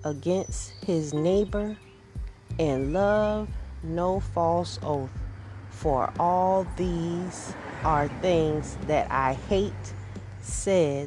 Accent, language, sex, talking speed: American, English, female, 90 wpm